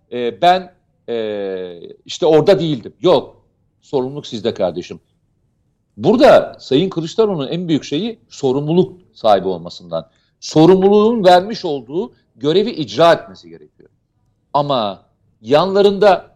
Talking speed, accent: 95 wpm, native